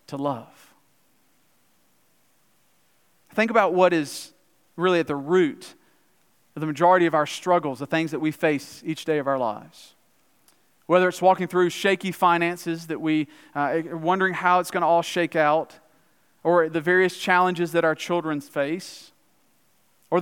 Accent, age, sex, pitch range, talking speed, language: American, 40-59, male, 155-185 Hz, 155 wpm, English